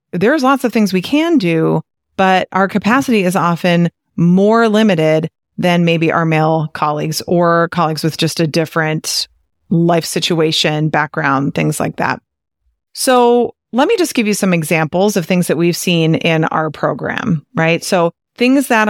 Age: 30-49